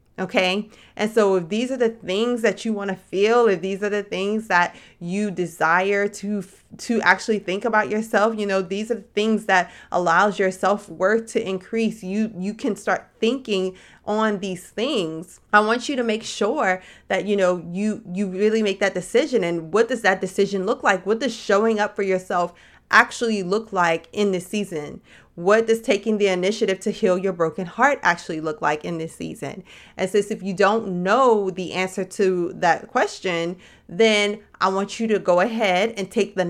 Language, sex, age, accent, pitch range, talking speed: English, female, 30-49, American, 185-225 Hz, 195 wpm